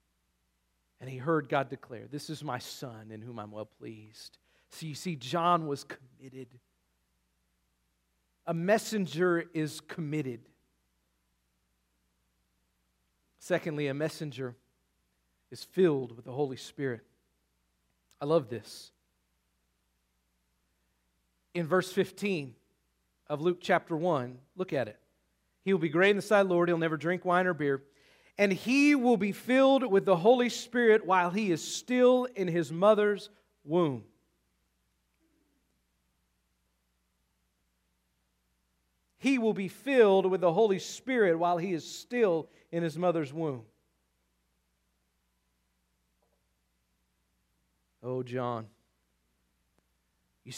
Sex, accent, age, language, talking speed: male, American, 40-59, English, 115 wpm